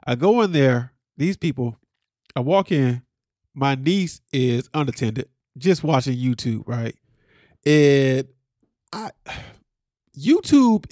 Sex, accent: male, American